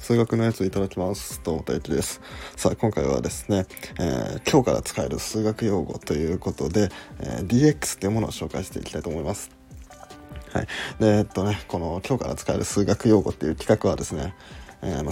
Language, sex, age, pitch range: Japanese, male, 20-39, 95-135 Hz